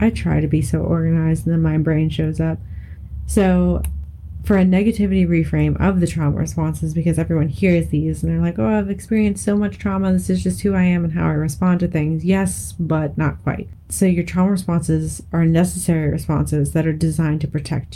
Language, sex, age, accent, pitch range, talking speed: English, female, 30-49, American, 150-175 Hz, 205 wpm